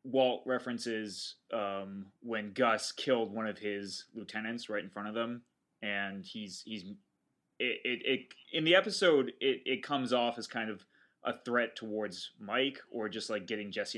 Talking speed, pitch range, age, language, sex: 170 wpm, 105-125 Hz, 20-39, English, male